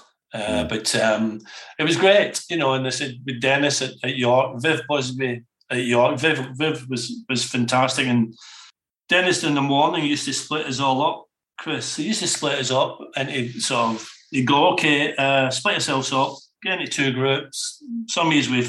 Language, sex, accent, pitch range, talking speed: English, male, British, 130-160 Hz, 205 wpm